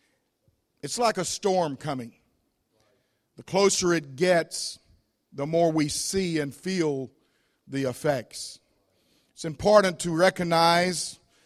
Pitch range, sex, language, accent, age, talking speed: 145-175 Hz, male, English, American, 50-69, 110 wpm